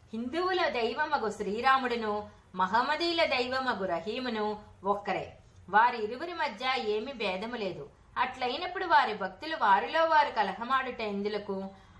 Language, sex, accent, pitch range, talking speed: Telugu, female, native, 205-305 Hz, 95 wpm